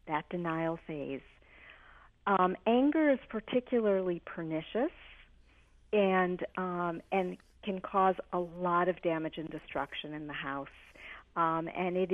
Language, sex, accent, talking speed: English, female, American, 125 wpm